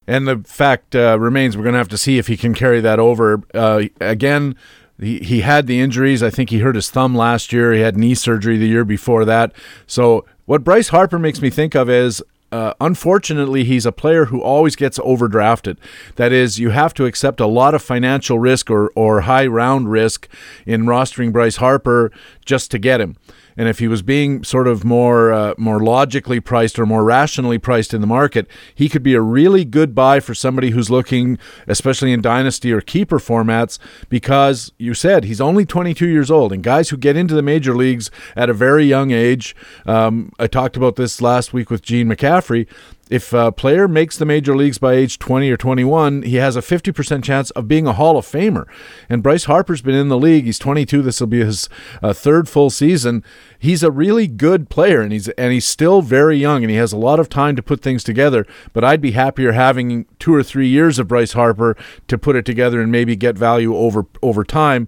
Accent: American